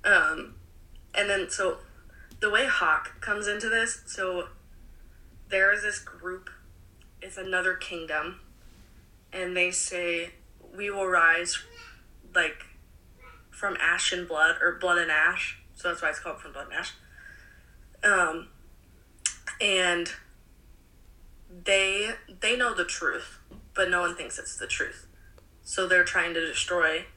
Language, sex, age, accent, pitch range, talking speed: English, female, 20-39, American, 170-195 Hz, 135 wpm